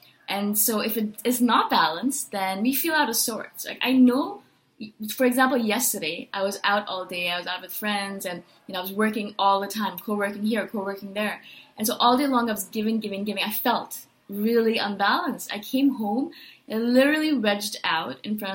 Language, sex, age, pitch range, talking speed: English, female, 20-39, 195-250 Hz, 205 wpm